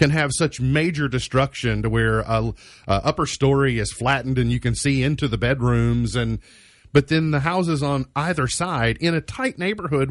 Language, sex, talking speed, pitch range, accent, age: English, male, 190 wpm, 95-140 Hz, American, 40-59